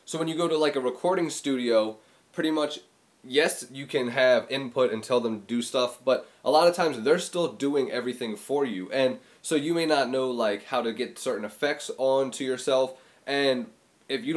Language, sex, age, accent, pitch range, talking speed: English, male, 20-39, American, 125-155 Hz, 210 wpm